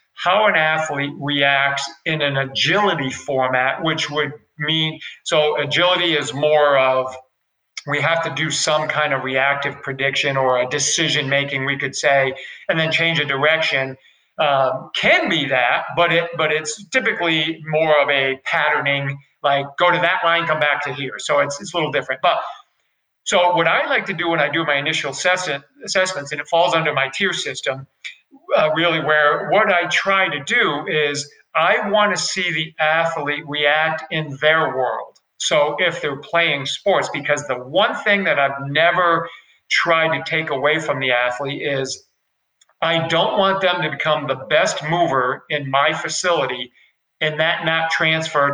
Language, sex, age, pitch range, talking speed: English, male, 50-69, 140-170 Hz, 175 wpm